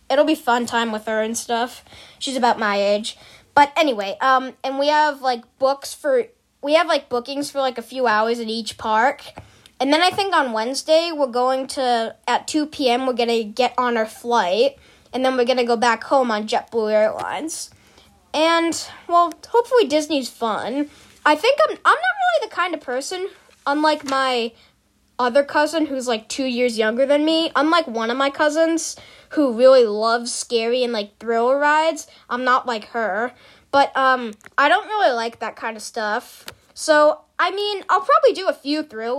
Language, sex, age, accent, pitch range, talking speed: English, female, 10-29, American, 235-310 Hz, 190 wpm